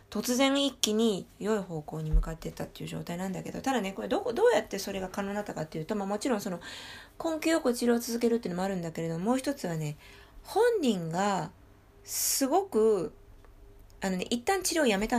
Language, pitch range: Japanese, 165-250 Hz